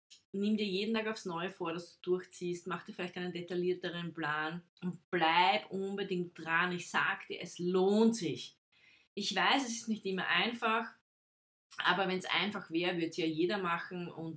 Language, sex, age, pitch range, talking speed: German, female, 20-39, 165-195 Hz, 185 wpm